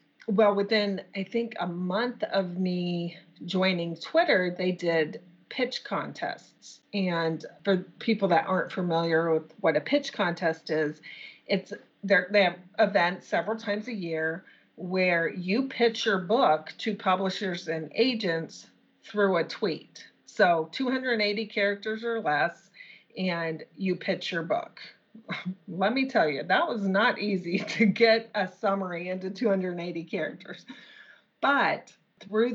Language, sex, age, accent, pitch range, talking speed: English, female, 30-49, American, 170-205 Hz, 135 wpm